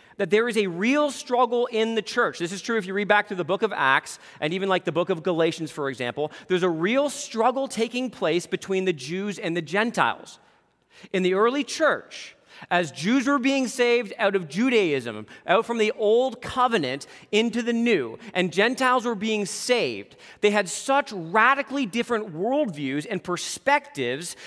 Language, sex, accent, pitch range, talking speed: English, male, American, 170-240 Hz, 185 wpm